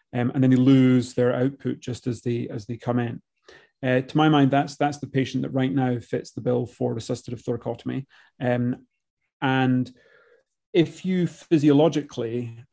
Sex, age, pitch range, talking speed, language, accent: male, 30-49, 125-140 Hz, 170 wpm, English, British